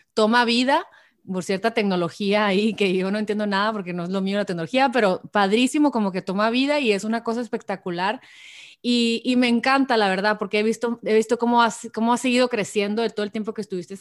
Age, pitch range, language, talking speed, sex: 30-49, 200-245 Hz, Spanish, 225 wpm, female